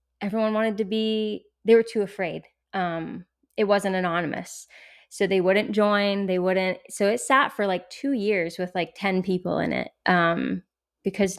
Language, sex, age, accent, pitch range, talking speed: English, female, 20-39, American, 185-210 Hz, 175 wpm